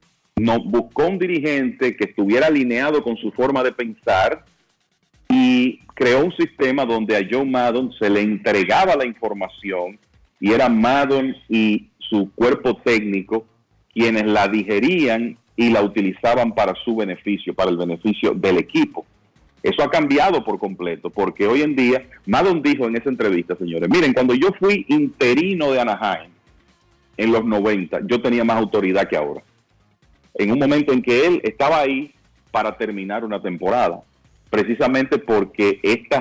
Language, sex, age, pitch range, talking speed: Spanish, male, 40-59, 100-130 Hz, 150 wpm